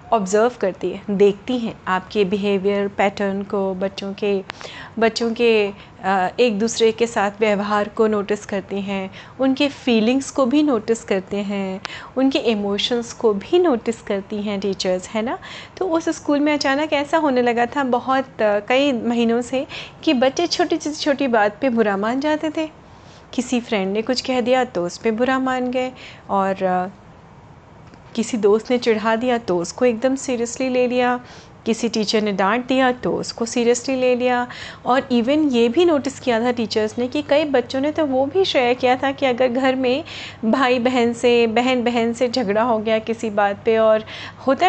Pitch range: 220-275 Hz